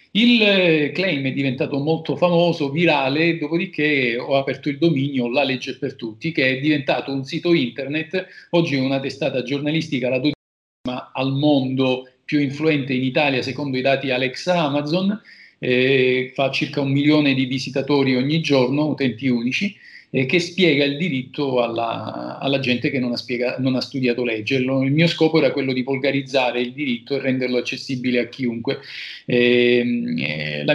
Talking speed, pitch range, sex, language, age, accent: 155 wpm, 130-155 Hz, male, Italian, 40-59, native